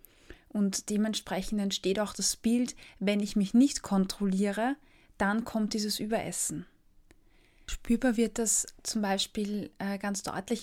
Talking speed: 125 wpm